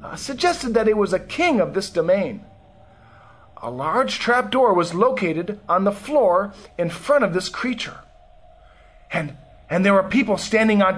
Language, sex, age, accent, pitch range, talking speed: English, male, 40-59, American, 170-270 Hz, 165 wpm